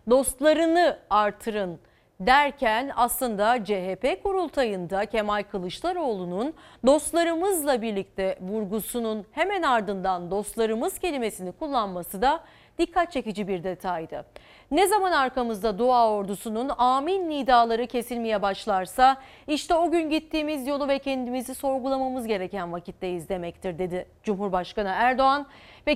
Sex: female